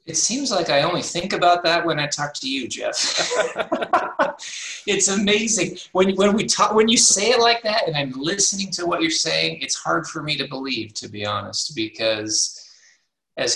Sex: male